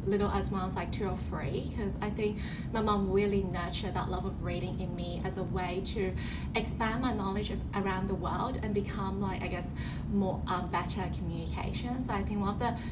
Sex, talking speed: female, 215 wpm